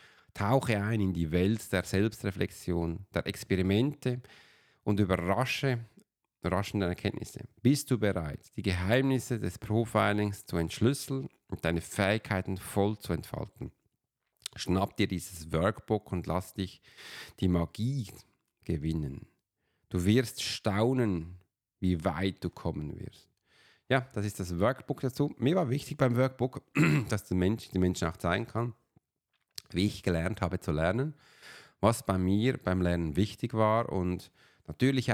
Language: German